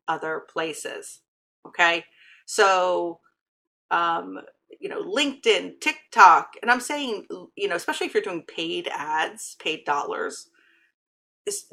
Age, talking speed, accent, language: 40-59, 115 wpm, American, English